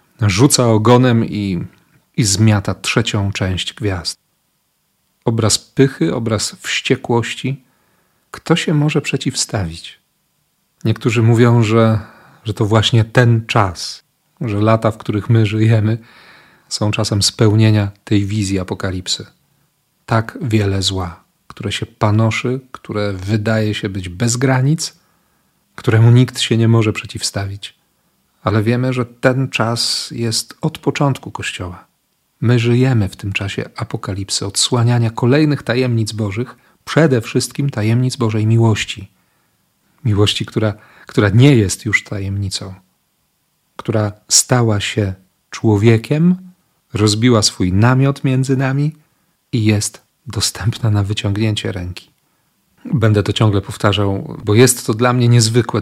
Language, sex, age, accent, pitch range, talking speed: Polish, male, 40-59, native, 105-130 Hz, 120 wpm